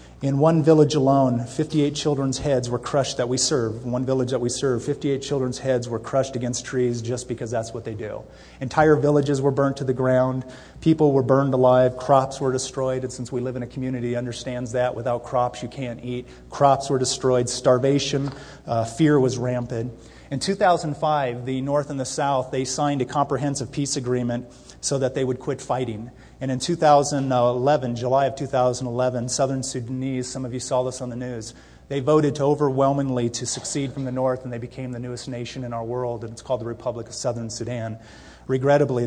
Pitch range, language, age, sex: 125-135 Hz, English, 30-49, male